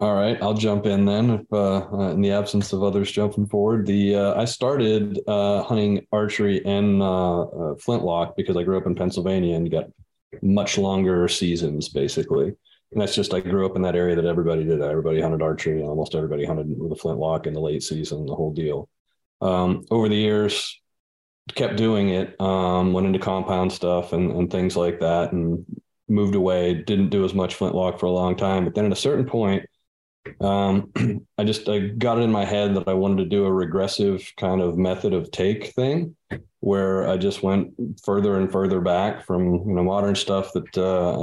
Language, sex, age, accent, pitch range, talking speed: English, male, 30-49, American, 90-100 Hz, 200 wpm